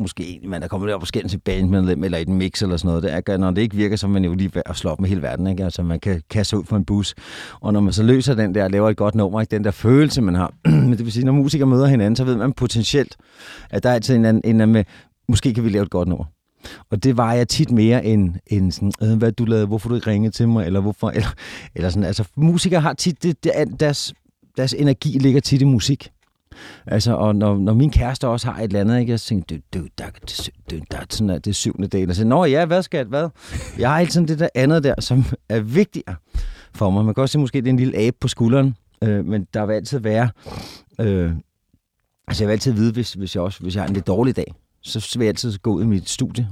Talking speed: 255 wpm